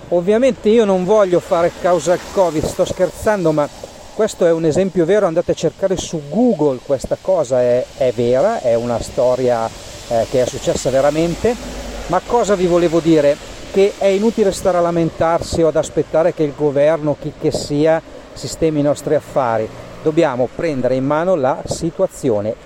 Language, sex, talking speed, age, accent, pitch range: Italian, male, 170 wpm, 40-59, native, 140-190 Hz